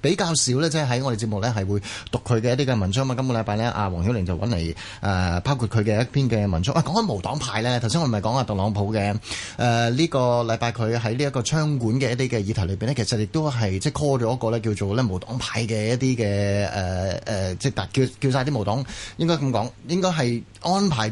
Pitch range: 105-135 Hz